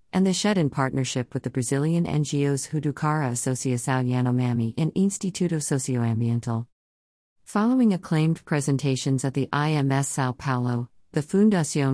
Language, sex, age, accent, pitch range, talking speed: English, female, 50-69, American, 125-155 Hz, 125 wpm